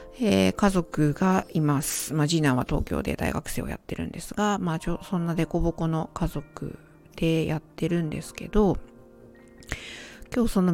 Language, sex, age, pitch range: Japanese, female, 50-69, 155-205 Hz